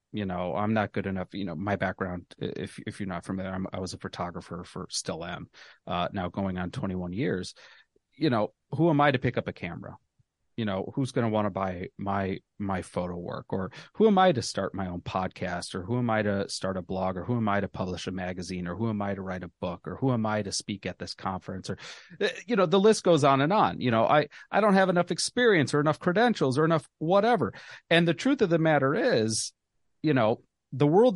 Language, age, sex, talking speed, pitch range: English, 30-49, male, 245 wpm, 100-150 Hz